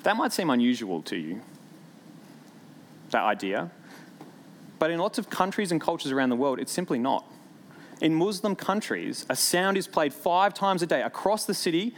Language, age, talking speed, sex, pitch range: English, 20-39, 175 wpm, male, 155-210 Hz